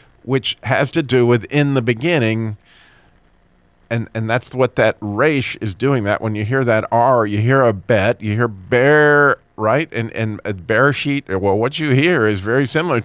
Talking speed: 195 wpm